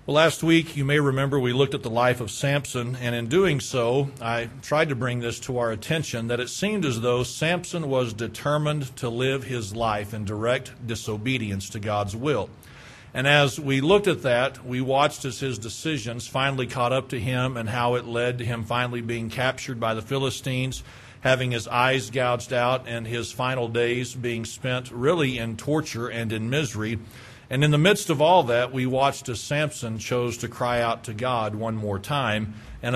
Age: 40-59